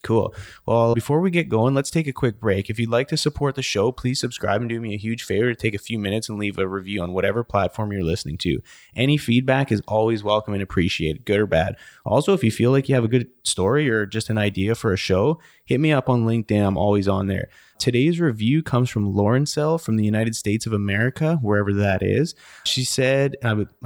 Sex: male